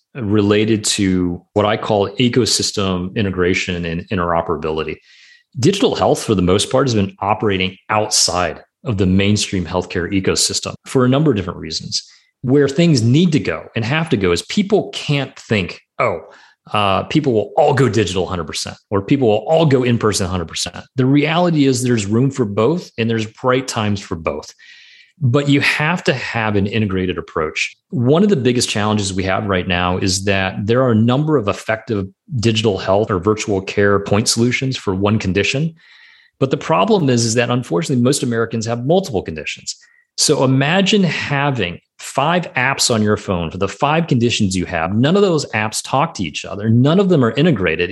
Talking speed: 180 wpm